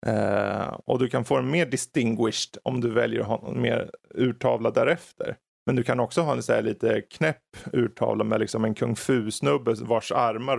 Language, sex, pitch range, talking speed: Swedish, male, 120-150 Hz, 195 wpm